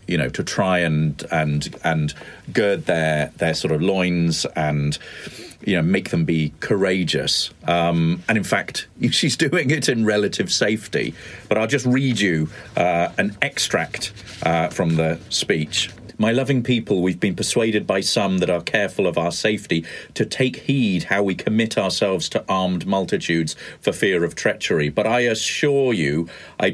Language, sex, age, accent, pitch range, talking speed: English, male, 40-59, British, 80-105 Hz, 170 wpm